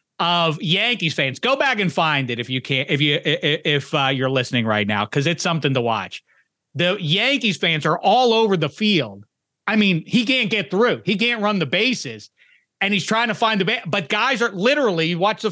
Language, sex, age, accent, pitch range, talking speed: English, male, 30-49, American, 150-215 Hz, 220 wpm